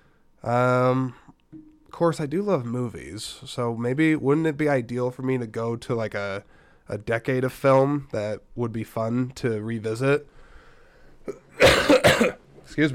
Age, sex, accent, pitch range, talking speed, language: 20-39, male, American, 120-155 Hz, 145 wpm, English